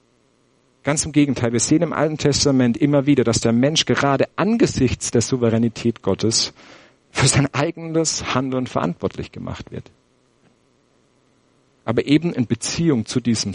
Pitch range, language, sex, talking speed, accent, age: 115-145 Hz, English, male, 135 wpm, German, 50-69